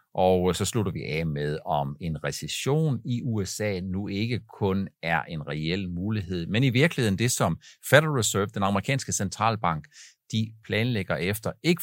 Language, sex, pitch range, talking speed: Danish, male, 90-115 Hz, 160 wpm